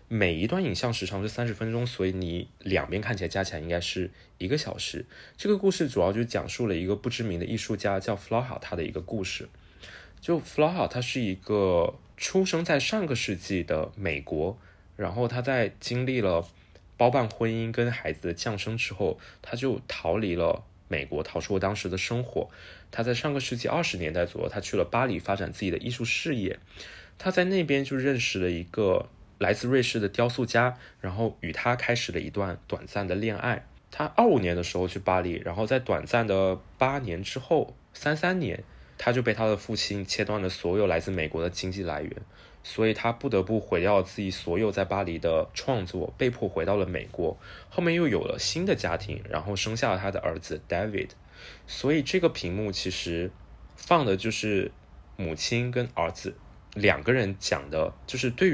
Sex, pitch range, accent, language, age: male, 95-120 Hz, native, Chinese, 20-39